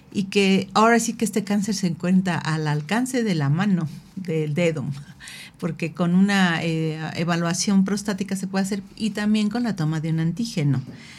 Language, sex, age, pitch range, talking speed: Spanish, female, 50-69, 165-215 Hz, 175 wpm